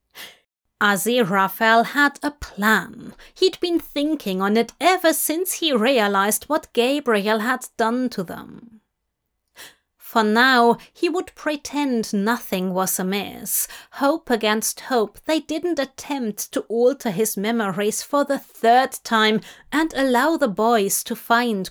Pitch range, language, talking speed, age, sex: 215-280 Hz, English, 130 wpm, 30-49, female